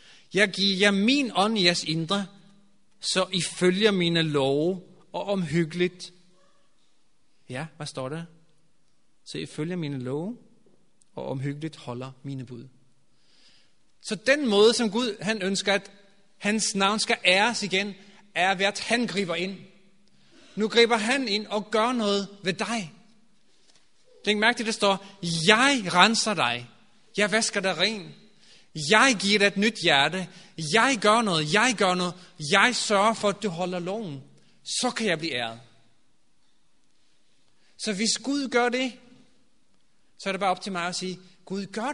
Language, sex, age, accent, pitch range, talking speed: Danish, male, 30-49, native, 175-220 Hz, 155 wpm